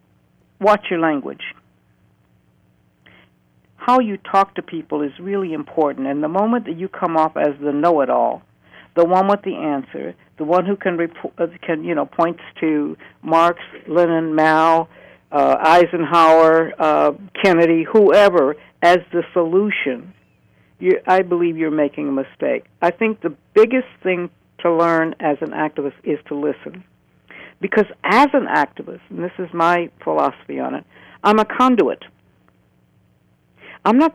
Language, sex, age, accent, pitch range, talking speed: English, female, 60-79, American, 150-195 Hz, 145 wpm